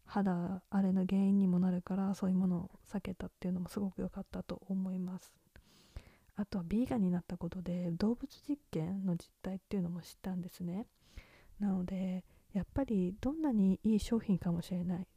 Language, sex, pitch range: Japanese, female, 185-220 Hz